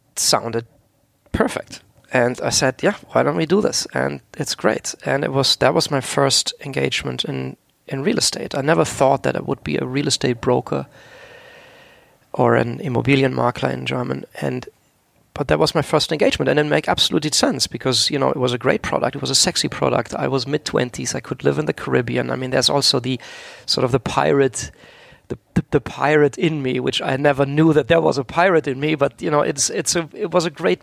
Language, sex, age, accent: German, male, 40-59, German